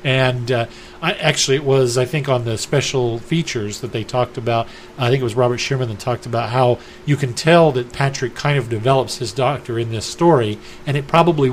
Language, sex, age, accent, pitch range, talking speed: English, male, 40-59, American, 115-140 Hz, 215 wpm